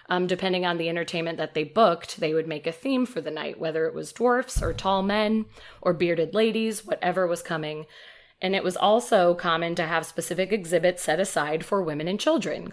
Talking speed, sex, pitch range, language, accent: 210 wpm, female, 160-190 Hz, English, American